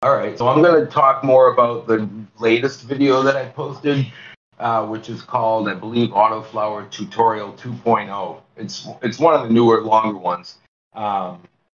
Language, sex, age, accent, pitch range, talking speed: English, male, 40-59, American, 105-125 Hz, 170 wpm